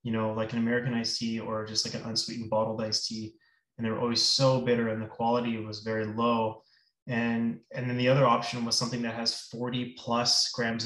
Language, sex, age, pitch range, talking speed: English, male, 20-39, 110-125 Hz, 215 wpm